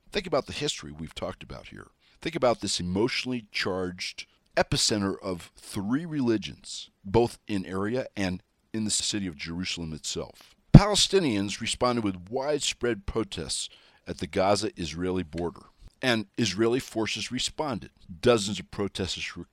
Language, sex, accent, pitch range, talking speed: English, male, American, 90-120 Hz, 135 wpm